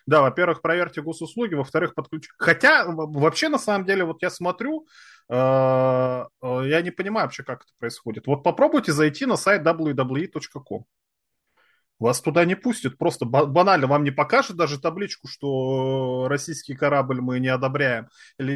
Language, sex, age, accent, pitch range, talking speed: Russian, male, 20-39, native, 130-180 Hz, 150 wpm